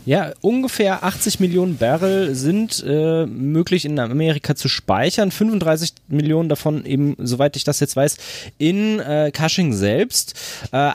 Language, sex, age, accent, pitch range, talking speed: German, male, 20-39, German, 135-180 Hz, 145 wpm